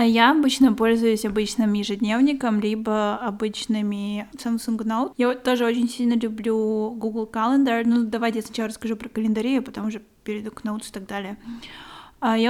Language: Russian